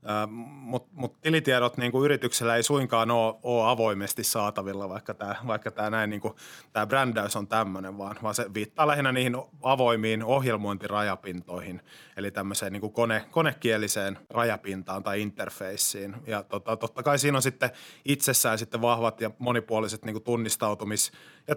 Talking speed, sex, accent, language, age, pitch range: 130 wpm, male, native, Finnish, 30-49, 105-125 Hz